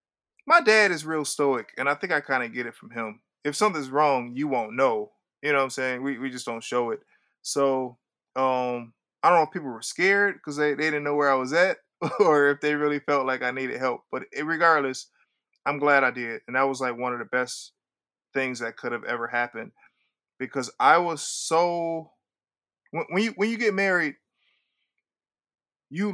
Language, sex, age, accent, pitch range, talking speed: English, male, 20-39, American, 130-165 Hz, 215 wpm